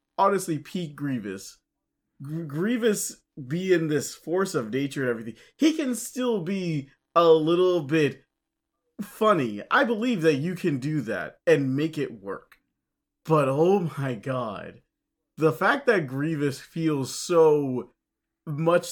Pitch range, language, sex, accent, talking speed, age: 130-175 Hz, English, male, American, 130 wpm, 20-39